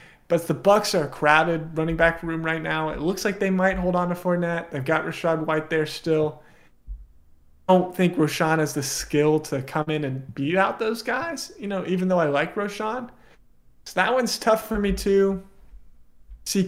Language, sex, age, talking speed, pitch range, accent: English, male, 20-39, 200 wpm, 145-185 Hz, American